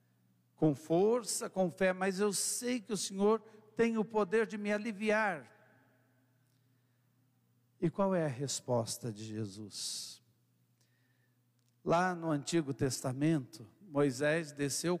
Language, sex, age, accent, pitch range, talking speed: Portuguese, male, 60-79, Brazilian, 130-190 Hz, 115 wpm